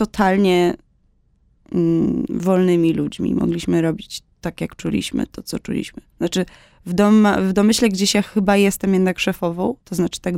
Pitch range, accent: 170-195 Hz, native